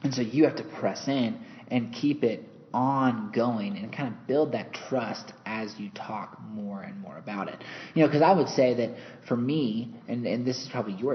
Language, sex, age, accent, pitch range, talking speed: English, male, 30-49, American, 115-165 Hz, 215 wpm